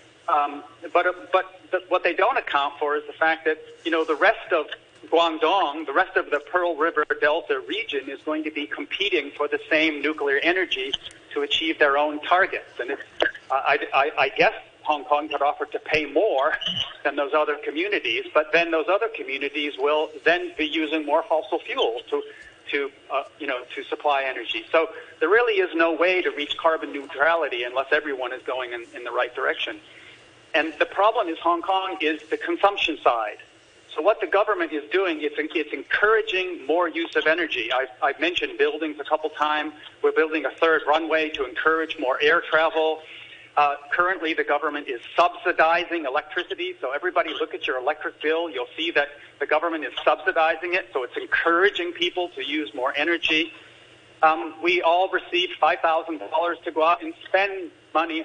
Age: 50-69